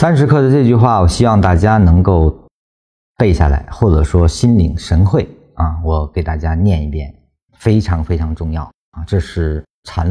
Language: Chinese